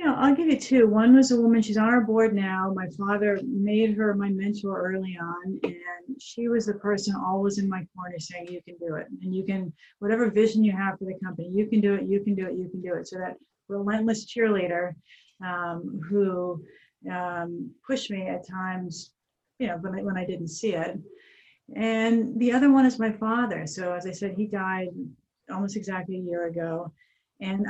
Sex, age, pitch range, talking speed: female, 40-59, 185-220 Hz, 205 wpm